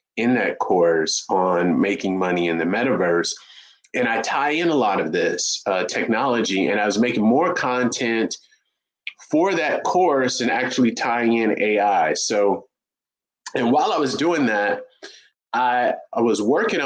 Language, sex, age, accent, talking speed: English, male, 30-49, American, 155 wpm